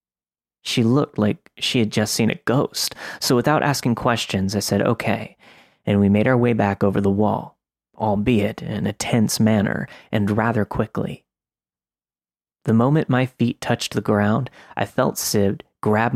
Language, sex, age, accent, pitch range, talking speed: English, male, 30-49, American, 100-120 Hz, 165 wpm